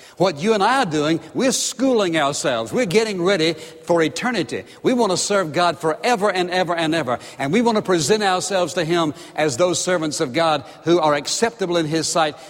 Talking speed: 205 wpm